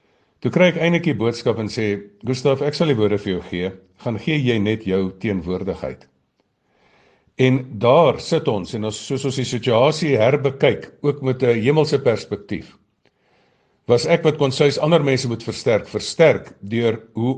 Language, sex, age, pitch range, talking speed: English, male, 50-69, 105-140 Hz, 165 wpm